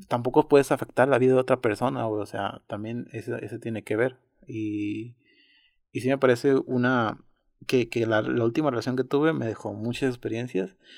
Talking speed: 185 wpm